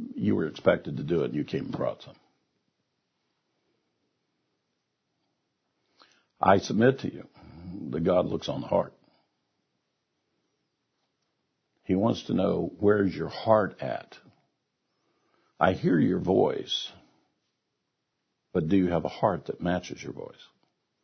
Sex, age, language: male, 60-79, English